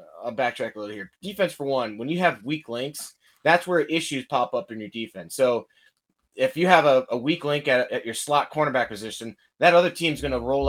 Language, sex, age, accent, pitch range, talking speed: English, male, 20-39, American, 120-155 Hz, 230 wpm